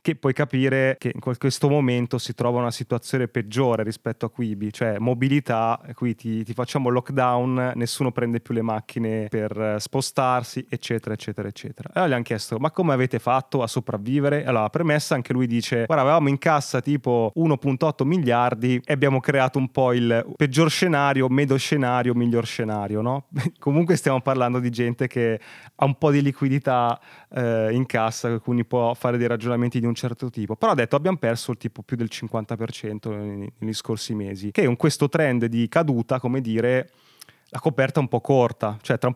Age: 20-39